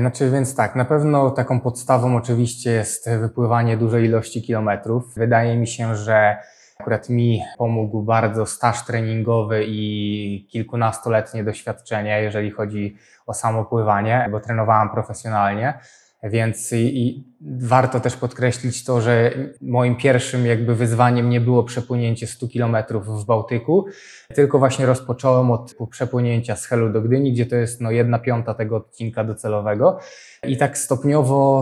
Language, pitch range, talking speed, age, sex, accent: Polish, 110-120 Hz, 140 wpm, 20-39, male, native